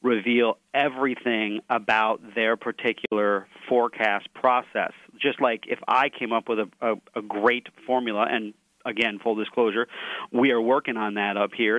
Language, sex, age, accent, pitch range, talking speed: English, male, 40-59, American, 115-140 Hz, 155 wpm